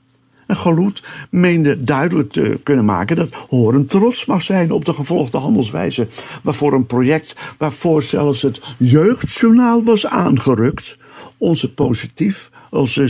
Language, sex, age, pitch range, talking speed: Dutch, male, 60-79, 120-150 Hz, 125 wpm